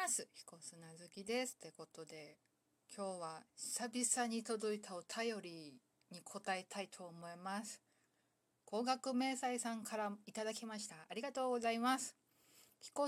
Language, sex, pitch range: Japanese, female, 190-255 Hz